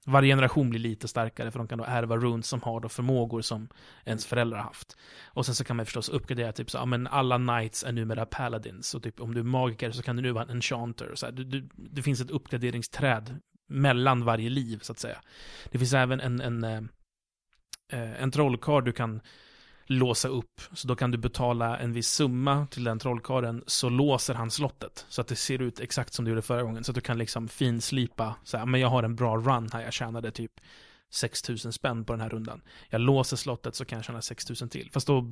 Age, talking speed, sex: 30-49, 230 wpm, male